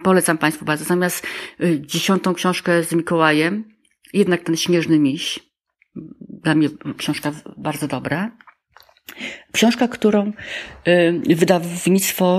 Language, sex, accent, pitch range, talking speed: Polish, female, native, 165-190 Hz, 95 wpm